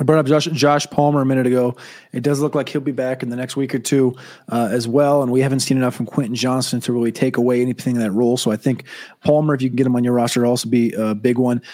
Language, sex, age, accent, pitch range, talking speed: English, male, 30-49, American, 125-155 Hz, 295 wpm